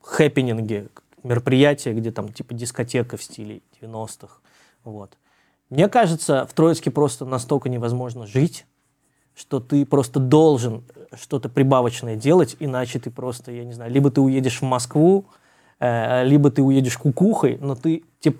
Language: Russian